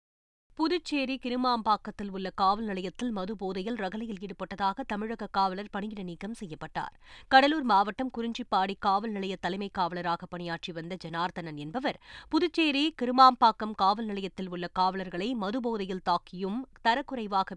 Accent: native